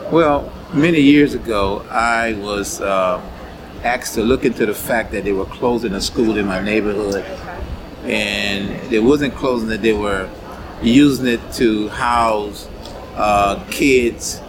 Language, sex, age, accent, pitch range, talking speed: English, male, 40-59, American, 100-115 Hz, 145 wpm